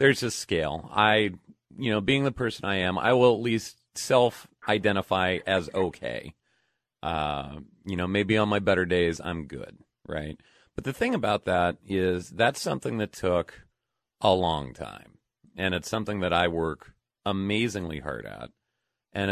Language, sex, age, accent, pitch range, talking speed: English, male, 40-59, American, 85-110 Hz, 160 wpm